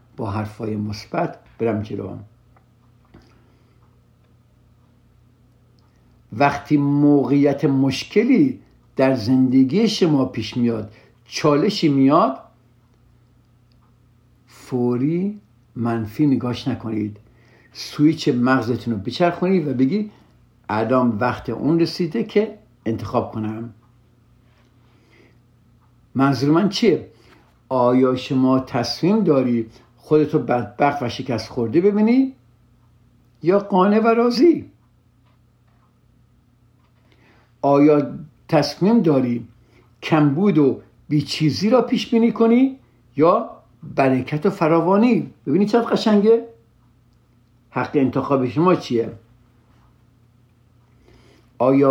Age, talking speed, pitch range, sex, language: 60-79, 80 wpm, 120-145 Hz, male, Persian